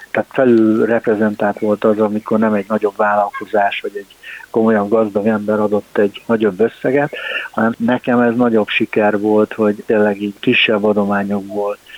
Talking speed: 145 wpm